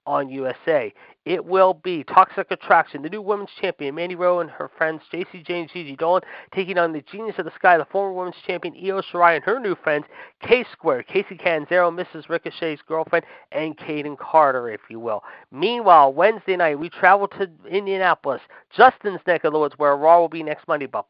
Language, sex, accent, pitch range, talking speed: English, male, American, 155-185 Hz, 195 wpm